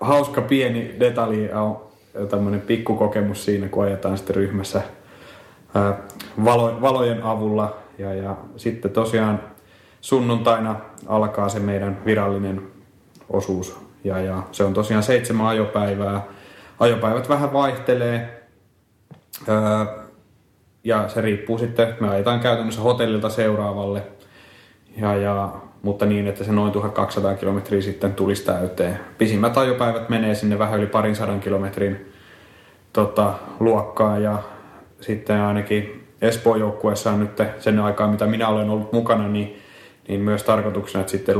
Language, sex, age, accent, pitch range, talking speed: Finnish, male, 30-49, native, 100-115 Hz, 125 wpm